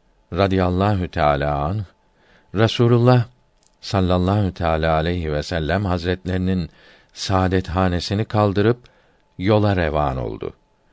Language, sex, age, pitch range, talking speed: Turkish, male, 50-69, 90-110 Hz, 65 wpm